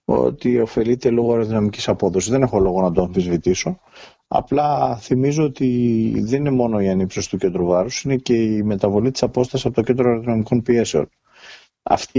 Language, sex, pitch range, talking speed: Greek, male, 110-140 Hz, 165 wpm